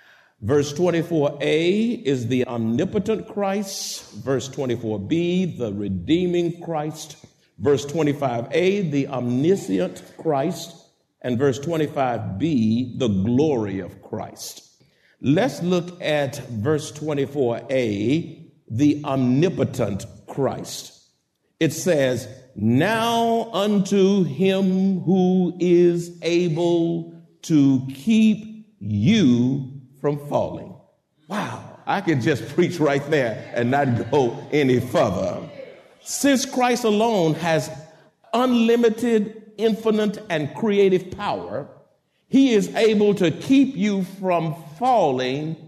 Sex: male